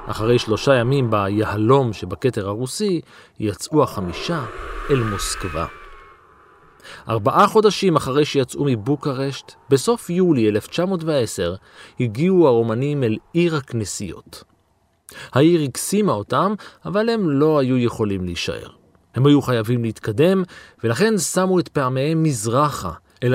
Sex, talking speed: male, 110 wpm